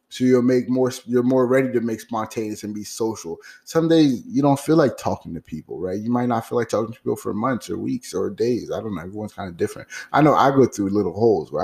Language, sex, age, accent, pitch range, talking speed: English, male, 20-39, American, 105-130 Hz, 270 wpm